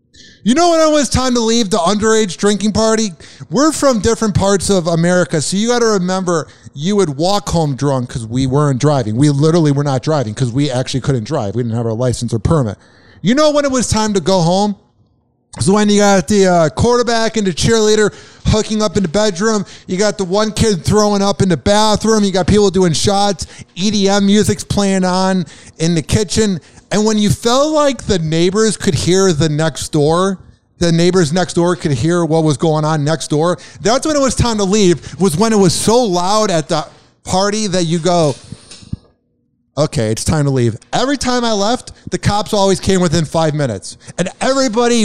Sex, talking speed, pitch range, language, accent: male, 210 wpm, 150-210 Hz, English, American